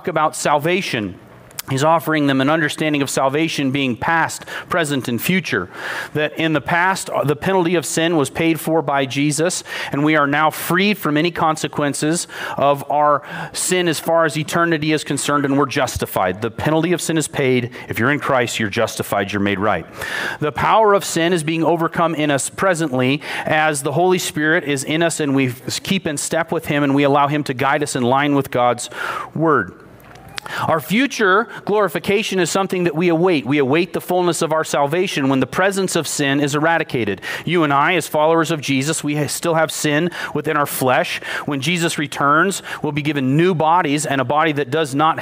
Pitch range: 140-165 Hz